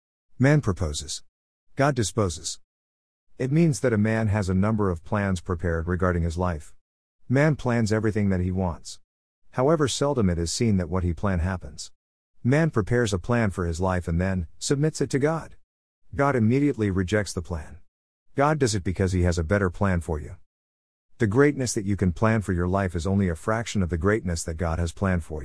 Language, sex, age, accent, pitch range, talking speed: English, male, 50-69, American, 85-110 Hz, 200 wpm